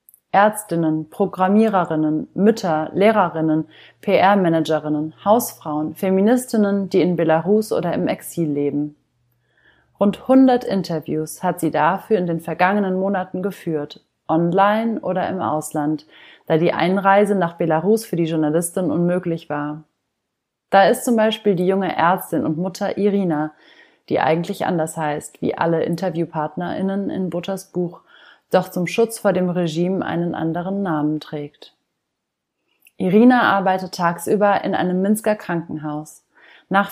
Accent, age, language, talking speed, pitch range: German, 30-49, German, 125 wpm, 155-195 Hz